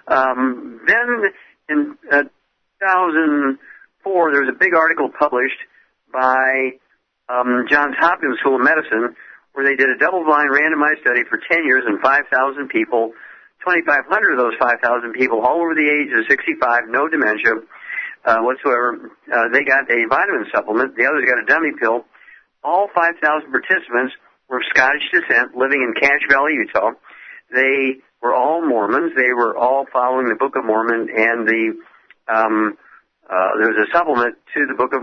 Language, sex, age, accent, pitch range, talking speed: English, male, 60-79, American, 120-150 Hz, 160 wpm